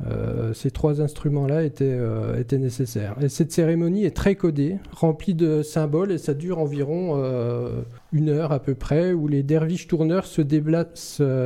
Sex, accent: male, French